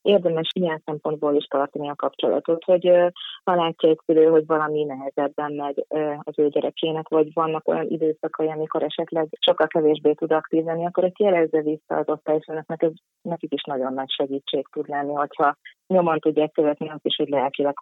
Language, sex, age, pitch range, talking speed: Hungarian, female, 20-39, 145-160 Hz, 175 wpm